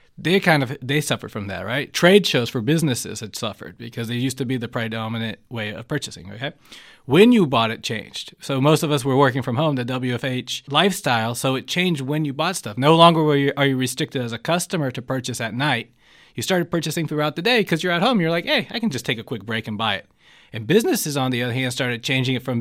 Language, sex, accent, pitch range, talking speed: English, male, American, 125-160 Hz, 250 wpm